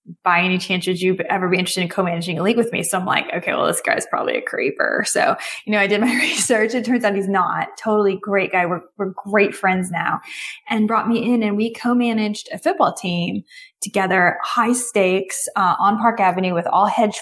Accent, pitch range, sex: American, 185-225 Hz, female